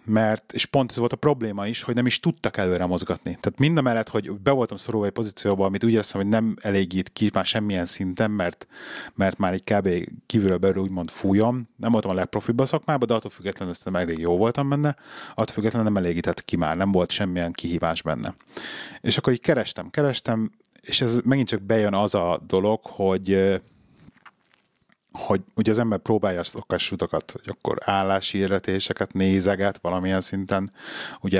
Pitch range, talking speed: 95-120 Hz, 185 wpm